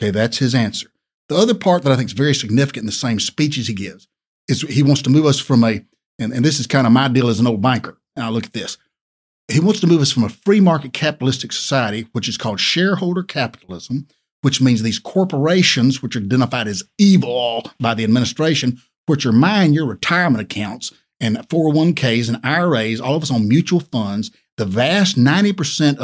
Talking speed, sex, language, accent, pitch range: 205 wpm, male, English, American, 115-160 Hz